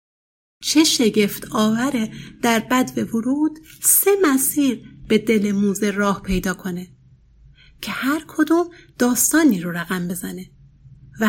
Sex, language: female, Persian